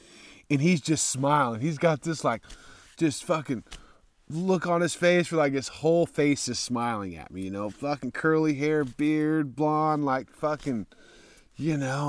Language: English